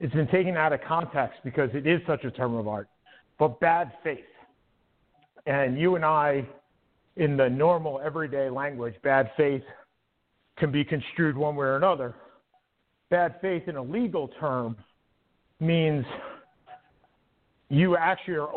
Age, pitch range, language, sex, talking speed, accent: 50-69, 135-180 Hz, English, male, 145 wpm, American